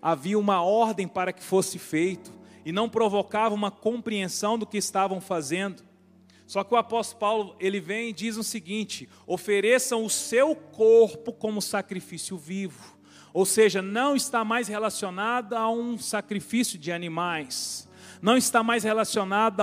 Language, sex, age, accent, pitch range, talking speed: Portuguese, male, 40-59, Brazilian, 190-235 Hz, 150 wpm